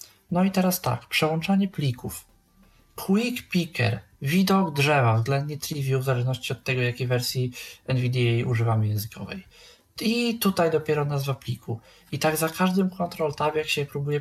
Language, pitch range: Polish, 140-170 Hz